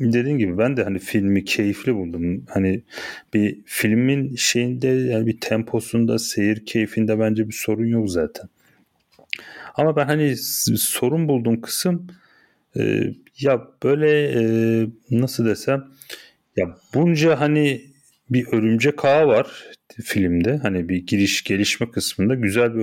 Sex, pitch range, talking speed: male, 105-135 Hz, 130 wpm